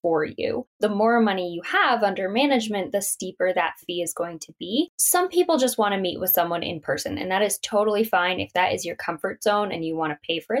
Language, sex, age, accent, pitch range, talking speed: English, female, 10-29, American, 180-240 Hz, 250 wpm